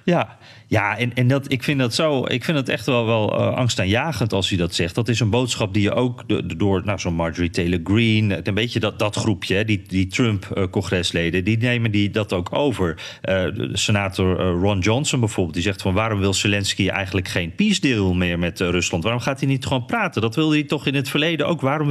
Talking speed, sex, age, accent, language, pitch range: 230 wpm, male, 40-59, Dutch, Dutch, 100-130 Hz